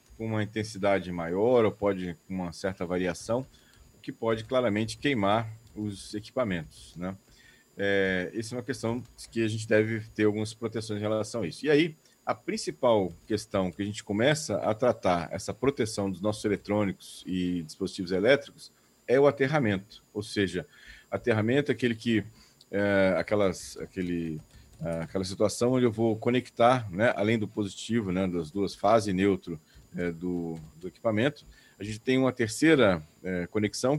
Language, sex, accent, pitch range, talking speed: Portuguese, male, Brazilian, 95-120 Hz, 160 wpm